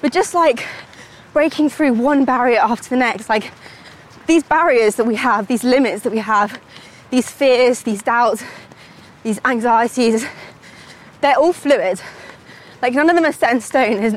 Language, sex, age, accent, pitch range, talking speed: English, female, 20-39, British, 230-275 Hz, 165 wpm